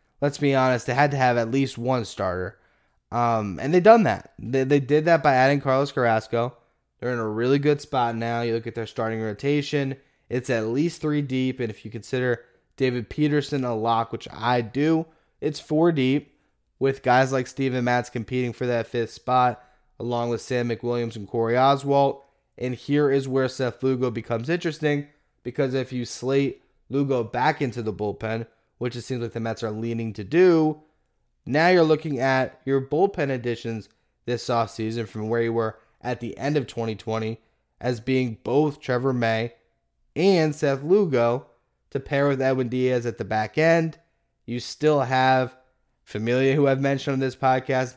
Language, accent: English, American